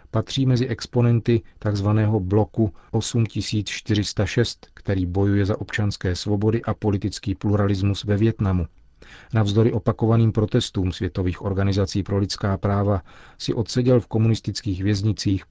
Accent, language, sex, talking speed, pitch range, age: native, Czech, male, 110 wpm, 95-110 Hz, 40-59